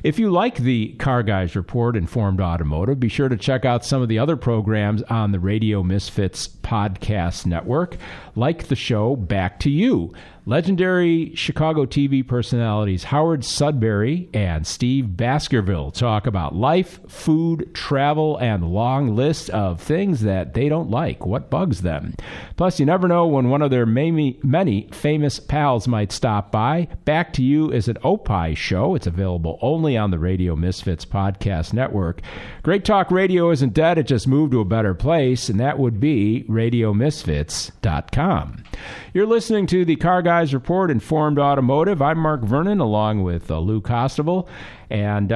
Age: 50-69